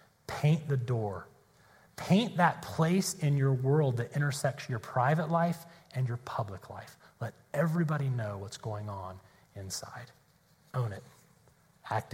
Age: 30-49